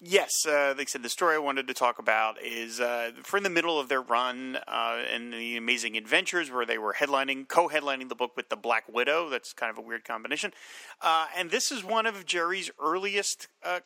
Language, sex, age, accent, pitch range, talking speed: English, male, 30-49, American, 120-160 Hz, 220 wpm